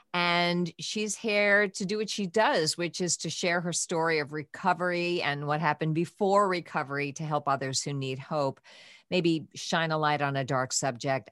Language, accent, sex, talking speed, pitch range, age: English, American, female, 185 wpm, 150-195 Hz, 50-69